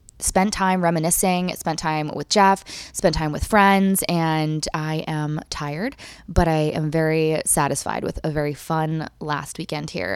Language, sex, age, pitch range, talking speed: English, female, 20-39, 160-195 Hz, 160 wpm